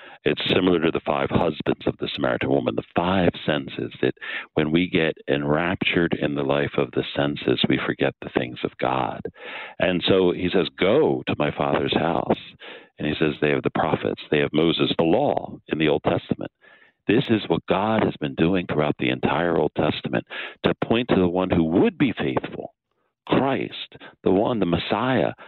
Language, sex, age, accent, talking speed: English, male, 60-79, American, 190 wpm